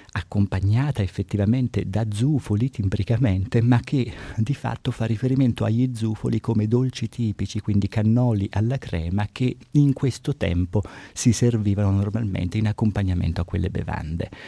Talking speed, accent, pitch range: 135 wpm, native, 95-120 Hz